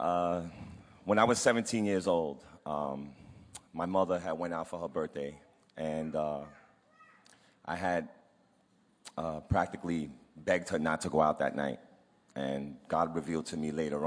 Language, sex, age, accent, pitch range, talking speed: English, male, 30-49, American, 75-90 Hz, 155 wpm